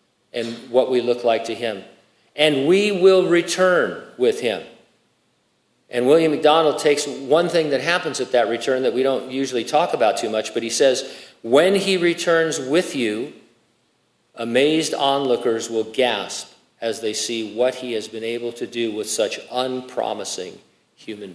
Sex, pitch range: male, 110-150 Hz